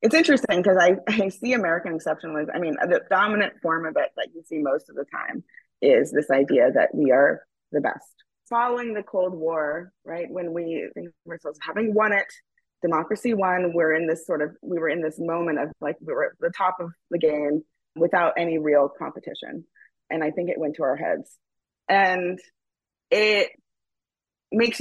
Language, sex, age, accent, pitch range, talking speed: English, female, 20-39, American, 165-220 Hz, 195 wpm